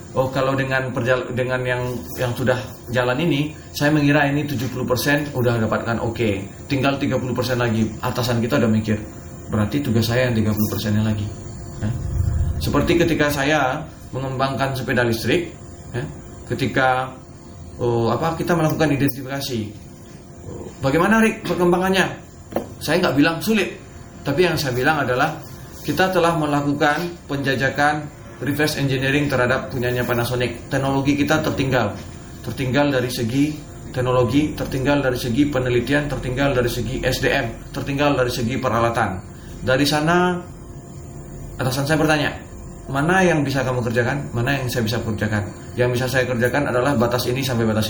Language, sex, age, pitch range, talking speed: Indonesian, male, 30-49, 115-145 Hz, 135 wpm